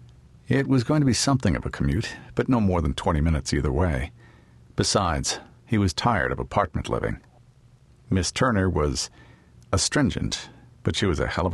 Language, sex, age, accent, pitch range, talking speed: English, male, 50-69, American, 80-120 Hz, 175 wpm